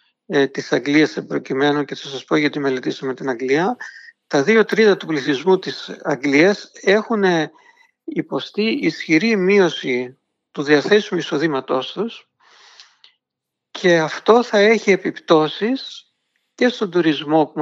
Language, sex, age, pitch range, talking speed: Greek, male, 50-69, 140-195 Hz, 120 wpm